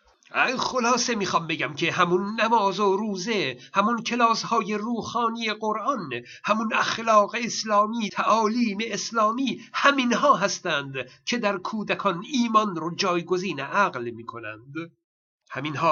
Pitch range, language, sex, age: 180-230 Hz, Persian, male, 60-79